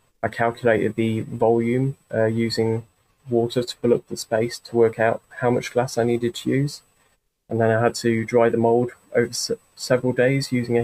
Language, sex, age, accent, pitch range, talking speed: English, male, 20-39, British, 110-120 Hz, 195 wpm